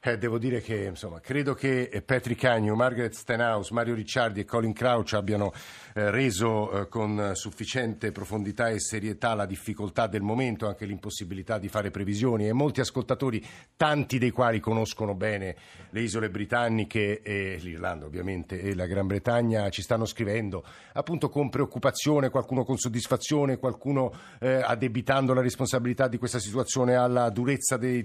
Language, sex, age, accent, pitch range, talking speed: Italian, male, 50-69, native, 110-130 Hz, 155 wpm